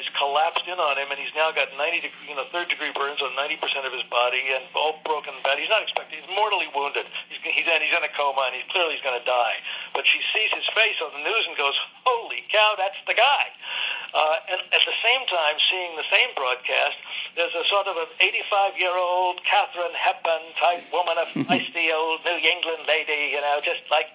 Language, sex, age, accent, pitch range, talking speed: English, male, 60-79, American, 140-175 Hz, 225 wpm